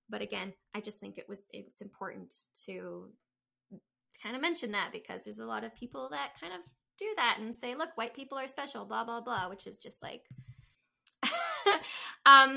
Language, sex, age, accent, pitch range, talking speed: English, female, 20-39, American, 205-245 Hz, 190 wpm